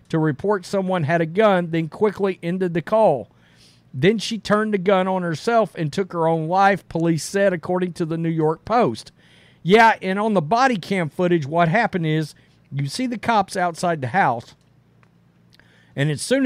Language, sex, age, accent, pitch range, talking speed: English, male, 50-69, American, 140-195 Hz, 185 wpm